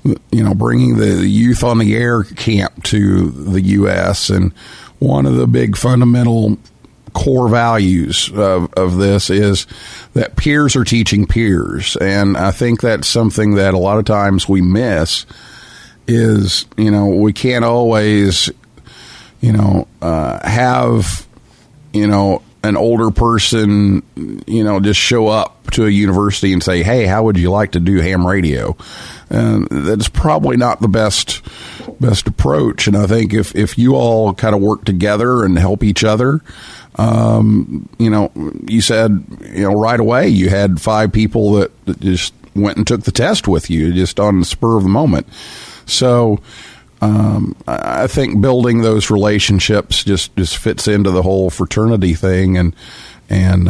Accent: American